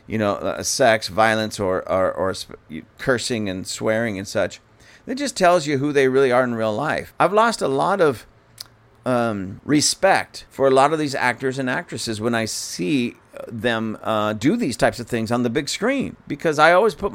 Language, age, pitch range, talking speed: English, 40-59, 120-165 Hz, 195 wpm